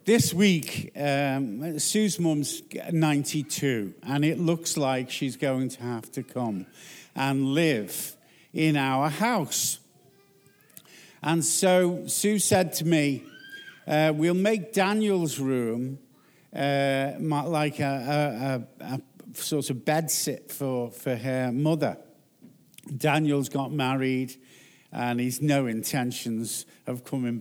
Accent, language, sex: British, English, male